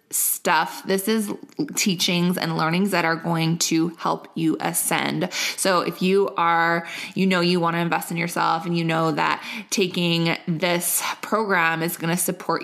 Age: 20-39